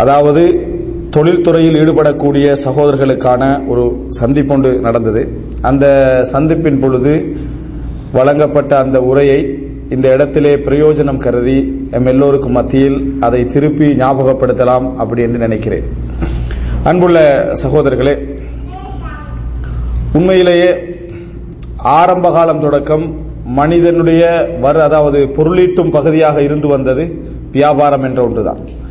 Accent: Indian